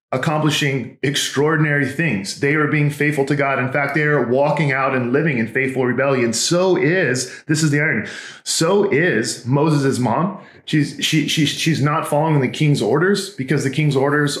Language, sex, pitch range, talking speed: English, male, 130-160 Hz, 180 wpm